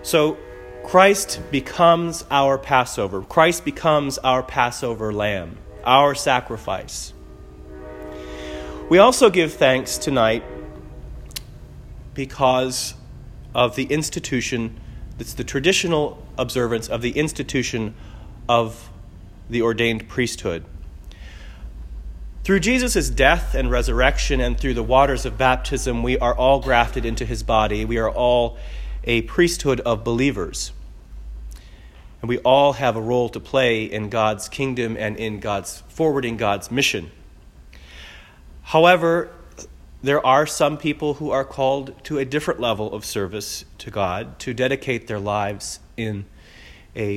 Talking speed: 120 wpm